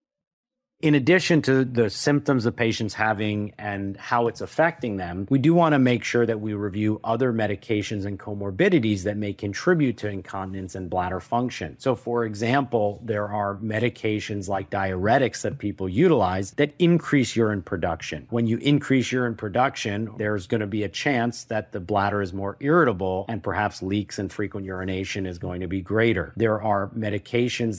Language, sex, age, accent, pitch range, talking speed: English, male, 40-59, American, 100-120 Hz, 175 wpm